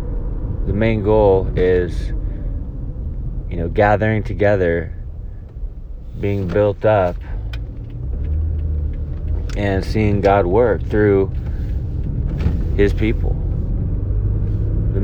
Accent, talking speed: American, 75 wpm